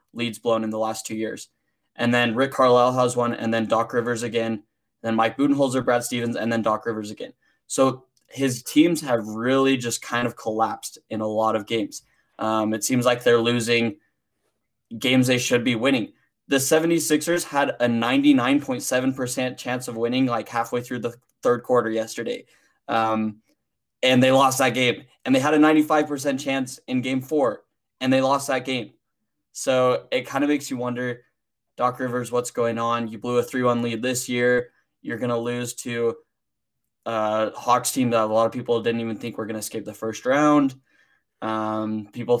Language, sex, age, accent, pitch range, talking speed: English, male, 20-39, American, 115-130 Hz, 190 wpm